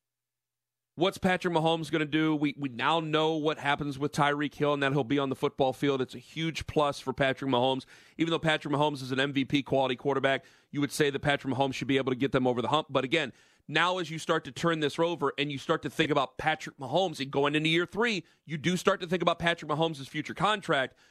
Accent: American